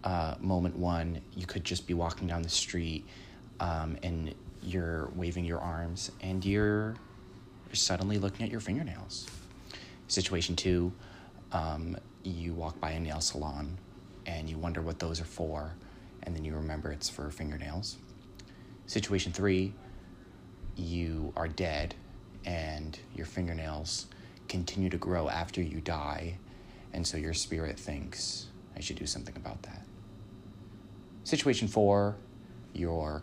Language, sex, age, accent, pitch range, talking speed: English, male, 20-39, American, 85-100 Hz, 135 wpm